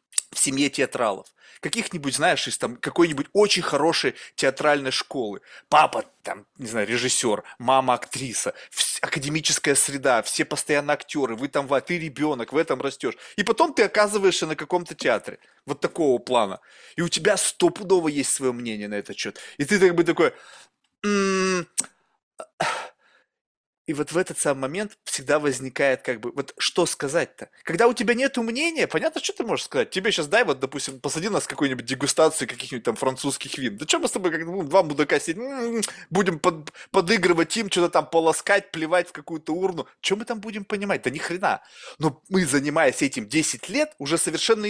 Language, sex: Russian, male